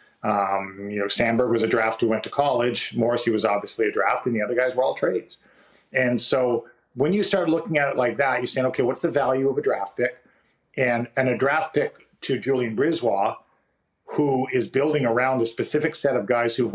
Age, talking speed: 40-59, 220 wpm